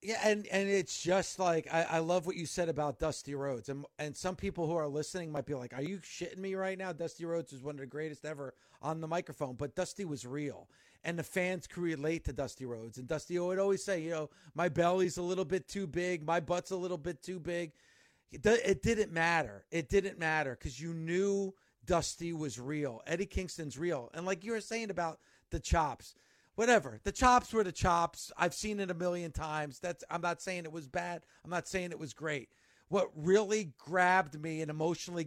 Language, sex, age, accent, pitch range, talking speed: English, male, 40-59, American, 155-195 Hz, 220 wpm